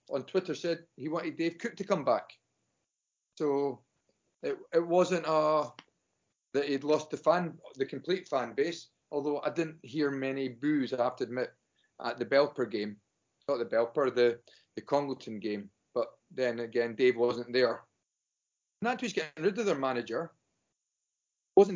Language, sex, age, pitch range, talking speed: English, male, 30-49, 130-170 Hz, 160 wpm